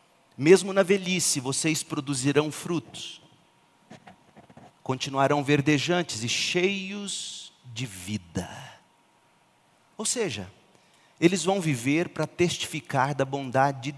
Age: 40-59